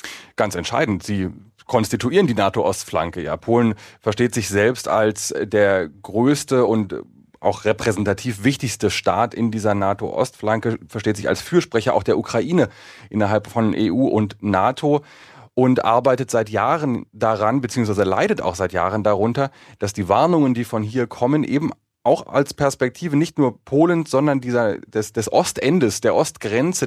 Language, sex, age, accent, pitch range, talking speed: German, male, 30-49, German, 105-130 Hz, 145 wpm